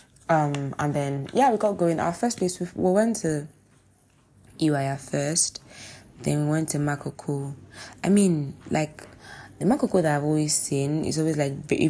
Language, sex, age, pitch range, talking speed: English, female, 20-39, 135-165 Hz, 170 wpm